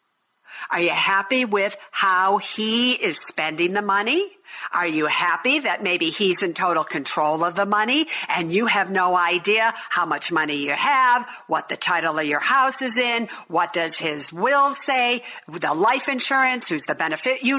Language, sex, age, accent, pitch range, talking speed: English, female, 50-69, American, 195-265 Hz, 175 wpm